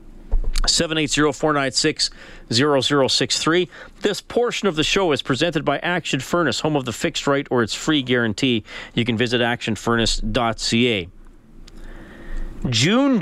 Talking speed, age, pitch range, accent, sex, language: 115 wpm, 40-59, 115-155 Hz, American, male, English